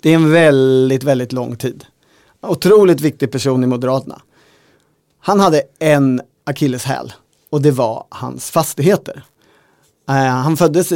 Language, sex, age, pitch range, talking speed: Swedish, male, 30-49, 135-155 Hz, 125 wpm